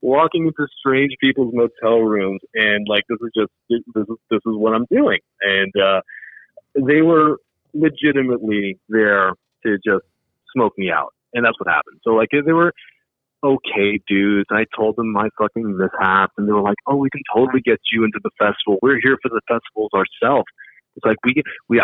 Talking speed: 190 wpm